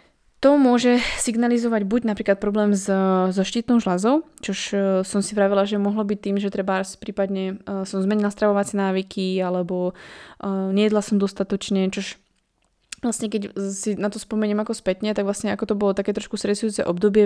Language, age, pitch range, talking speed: Slovak, 20-39, 190-210 Hz, 165 wpm